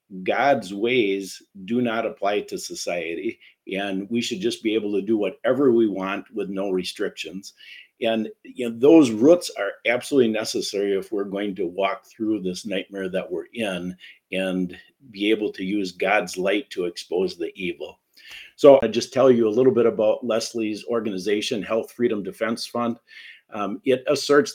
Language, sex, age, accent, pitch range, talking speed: English, male, 50-69, American, 105-135 Hz, 165 wpm